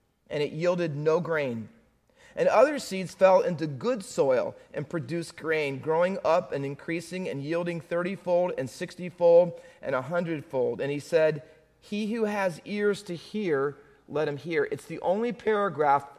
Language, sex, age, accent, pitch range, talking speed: English, male, 40-59, American, 140-190 Hz, 160 wpm